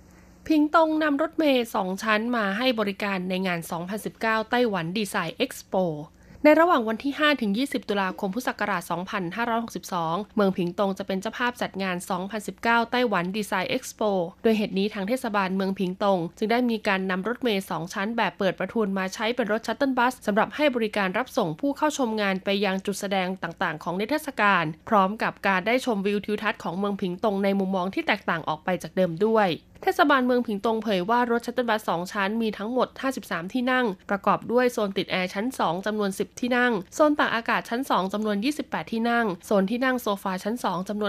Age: 20-39